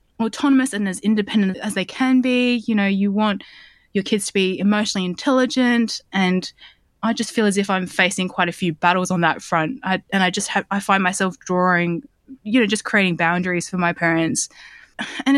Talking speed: 195 wpm